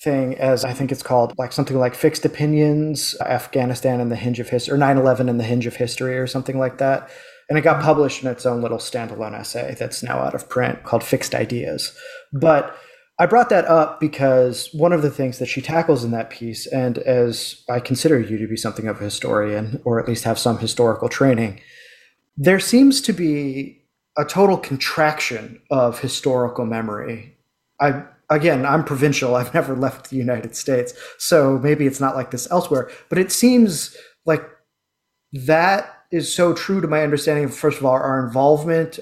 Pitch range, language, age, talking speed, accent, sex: 125-155 Hz, English, 20-39, 190 wpm, American, male